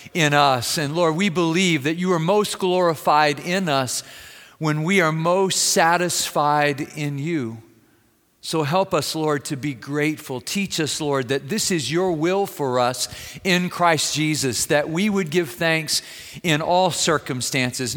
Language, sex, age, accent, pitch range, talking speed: English, male, 50-69, American, 135-170 Hz, 160 wpm